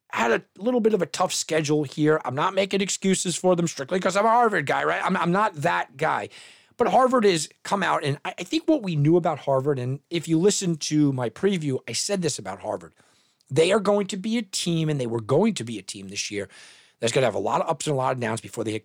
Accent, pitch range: American, 150-220 Hz